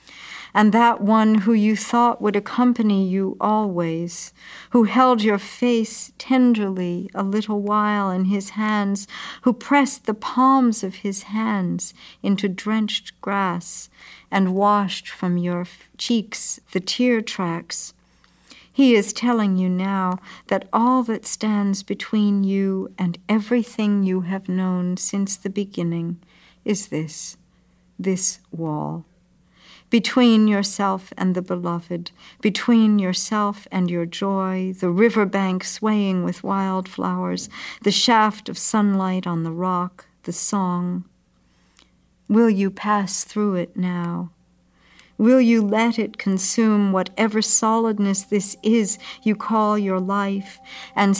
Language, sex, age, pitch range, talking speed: English, female, 60-79, 185-220 Hz, 125 wpm